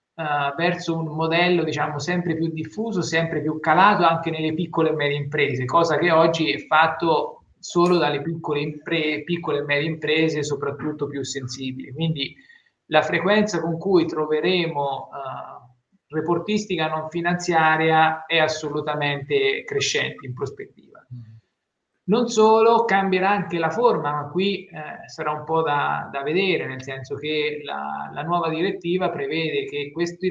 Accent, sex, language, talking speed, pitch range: native, male, Italian, 145 wpm, 150-175 Hz